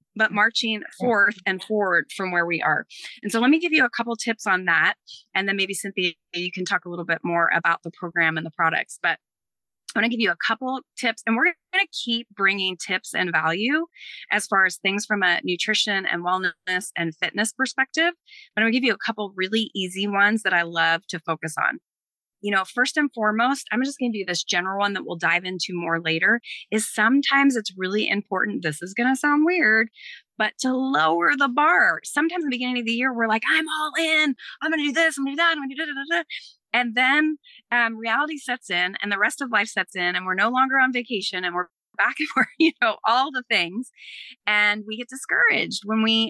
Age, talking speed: 30-49, 230 wpm